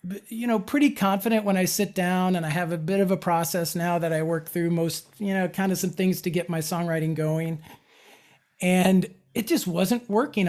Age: 40-59